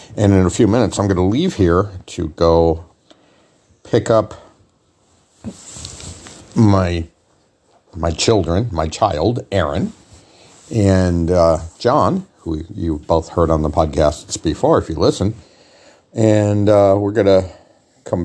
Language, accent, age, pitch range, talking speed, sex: English, American, 50-69, 85-105 Hz, 130 wpm, male